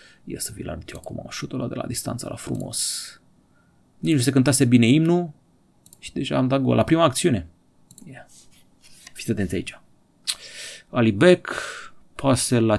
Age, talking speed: 30-49, 160 wpm